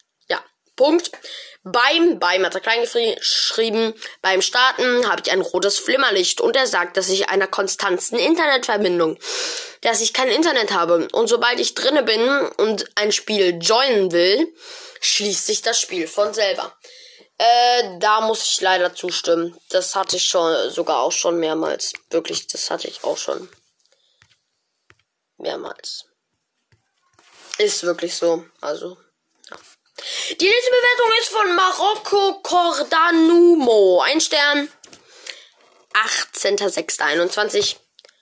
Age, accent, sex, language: 20-39, German, female, German